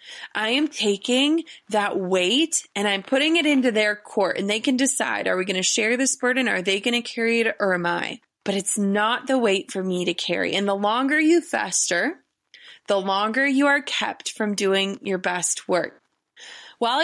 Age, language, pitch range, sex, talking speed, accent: 20-39, English, 200-270 Hz, female, 200 wpm, American